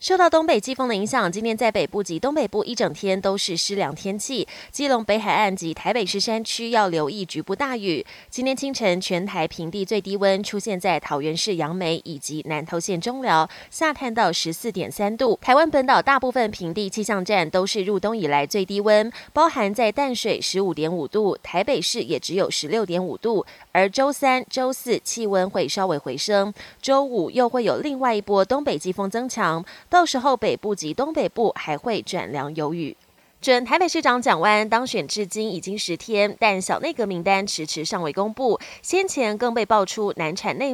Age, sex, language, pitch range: 20-39, female, Chinese, 185-245 Hz